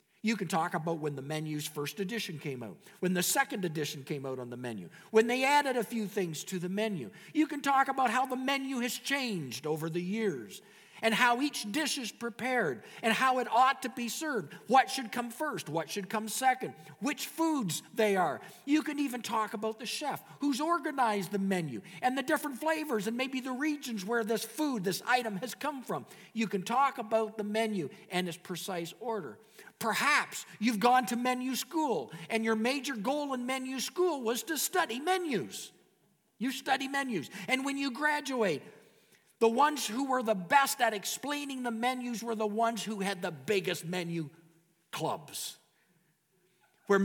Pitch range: 185-260 Hz